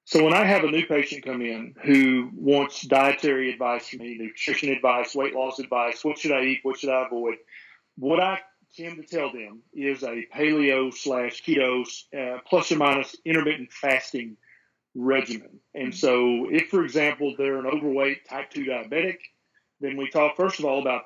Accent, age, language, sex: American, 40-59, English, male